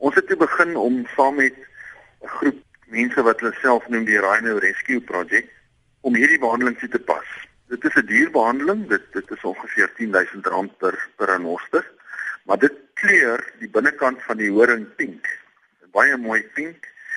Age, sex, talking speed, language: 50-69, male, 175 wpm, Dutch